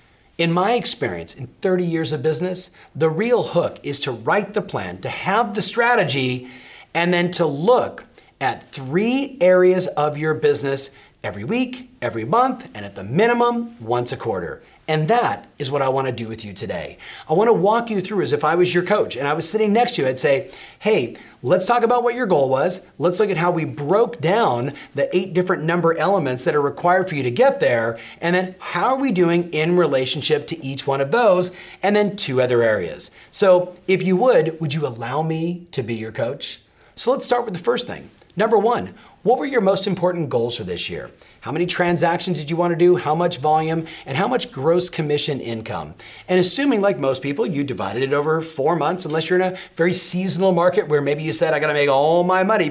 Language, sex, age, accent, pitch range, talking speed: English, male, 40-59, American, 145-195 Hz, 215 wpm